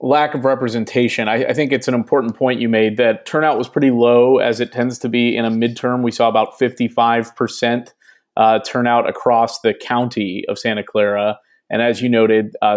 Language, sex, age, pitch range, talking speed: English, male, 30-49, 110-125 Hz, 195 wpm